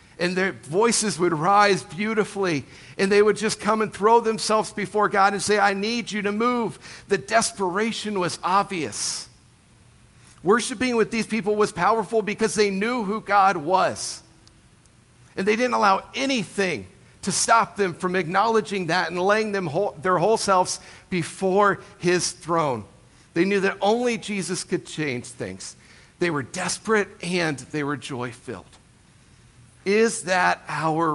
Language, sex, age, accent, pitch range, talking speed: English, male, 50-69, American, 125-200 Hz, 145 wpm